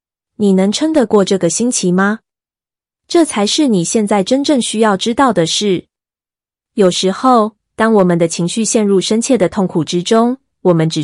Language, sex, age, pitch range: Chinese, female, 20-39, 175-215 Hz